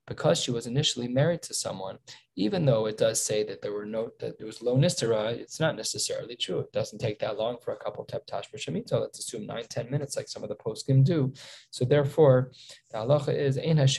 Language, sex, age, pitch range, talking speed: English, male, 20-39, 115-145 Hz, 225 wpm